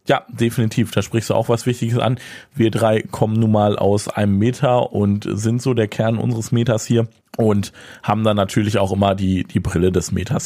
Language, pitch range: German, 100-115 Hz